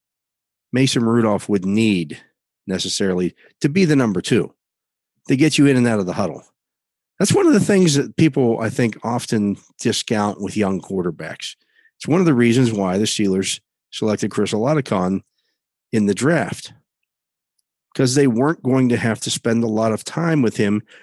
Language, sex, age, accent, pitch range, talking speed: English, male, 40-59, American, 100-130 Hz, 175 wpm